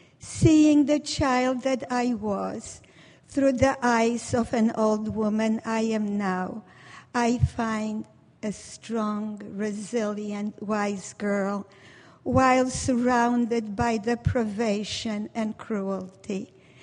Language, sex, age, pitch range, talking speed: English, female, 50-69, 195-245 Hz, 105 wpm